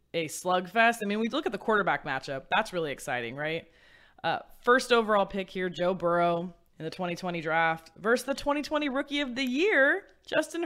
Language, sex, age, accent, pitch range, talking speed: English, female, 20-39, American, 165-220 Hz, 185 wpm